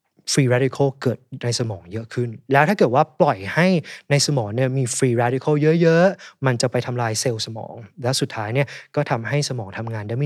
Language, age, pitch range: Thai, 20-39, 120-155 Hz